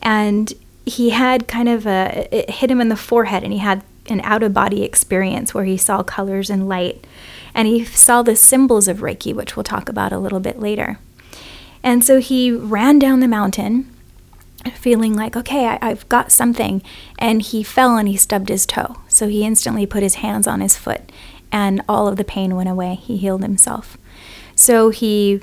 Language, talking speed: English, 200 wpm